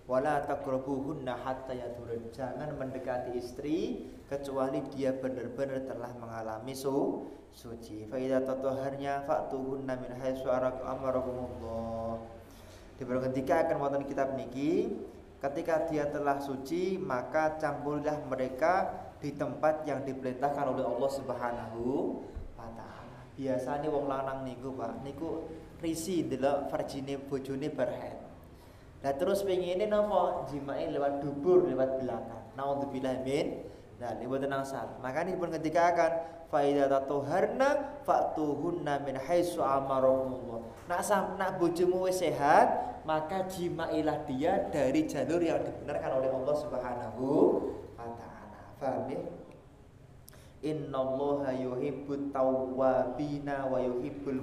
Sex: male